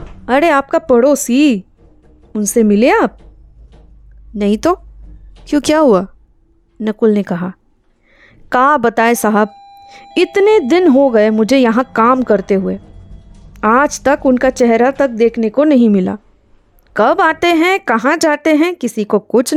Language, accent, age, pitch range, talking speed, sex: Hindi, native, 30-49, 220-300 Hz, 135 wpm, female